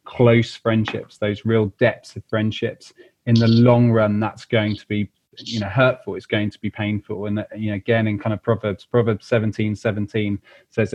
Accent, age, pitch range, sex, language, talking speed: British, 30-49, 105-120 Hz, male, English, 190 wpm